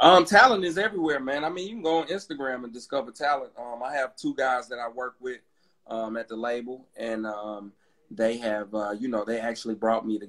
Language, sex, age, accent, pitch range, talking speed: English, male, 30-49, American, 105-120 Hz, 235 wpm